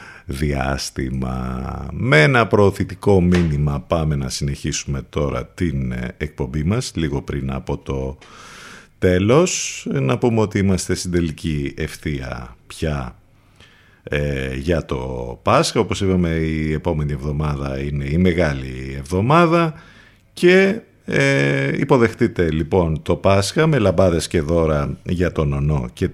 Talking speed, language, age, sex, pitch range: 115 wpm, Greek, 50-69, male, 75-110 Hz